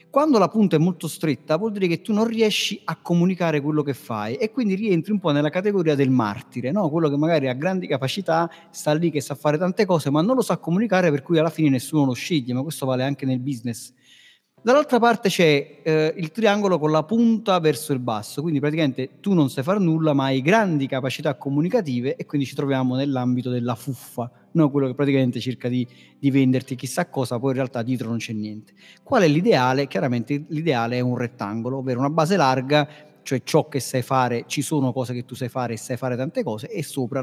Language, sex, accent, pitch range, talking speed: Italian, male, native, 130-175 Hz, 220 wpm